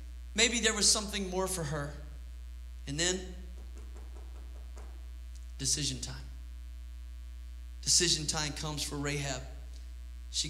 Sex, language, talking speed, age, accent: male, English, 95 wpm, 30-49, American